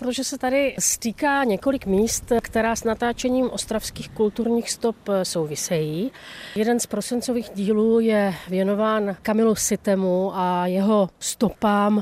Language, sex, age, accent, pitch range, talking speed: Czech, female, 40-59, native, 185-230 Hz, 120 wpm